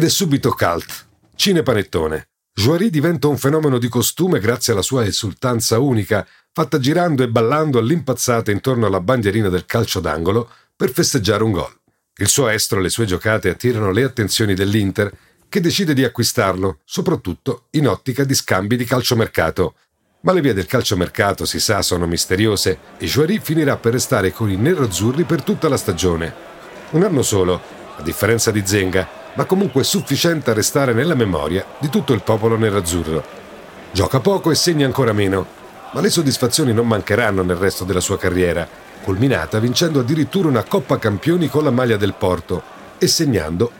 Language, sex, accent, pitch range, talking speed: Italian, male, native, 95-140 Hz, 170 wpm